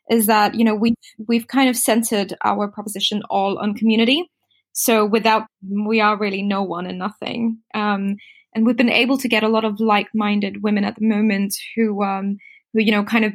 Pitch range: 195-225 Hz